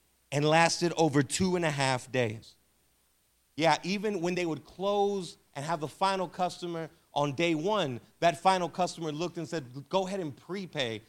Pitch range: 115-170 Hz